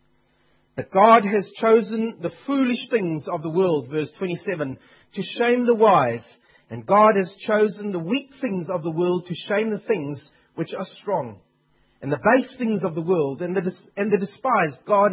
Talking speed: 185 wpm